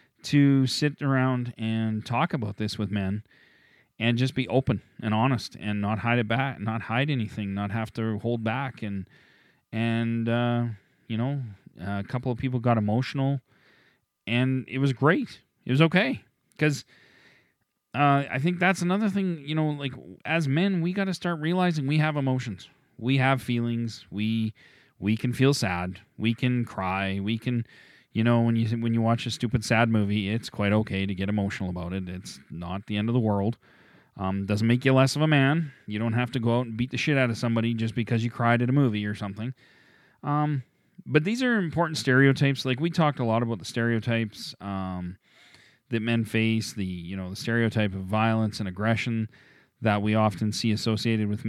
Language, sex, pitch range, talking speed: English, male, 105-130 Hz, 195 wpm